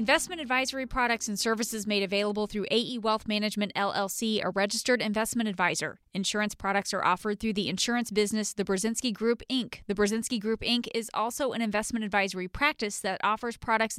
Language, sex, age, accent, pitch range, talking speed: English, female, 20-39, American, 200-240 Hz, 175 wpm